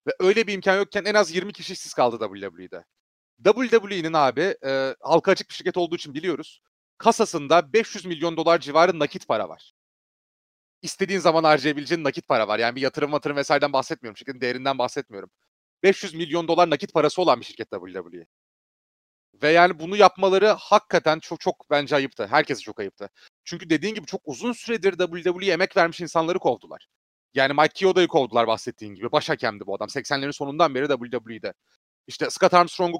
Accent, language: native, Turkish